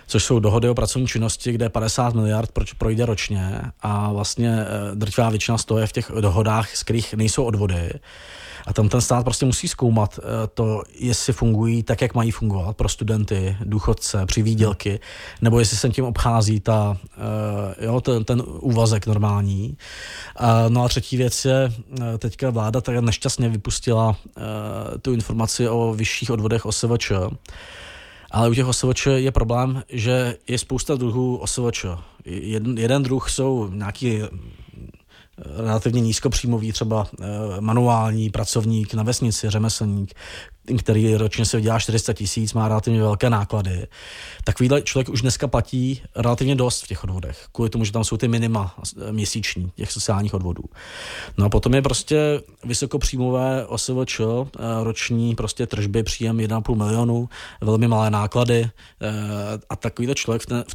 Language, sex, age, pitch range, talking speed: Czech, male, 20-39, 105-120 Hz, 140 wpm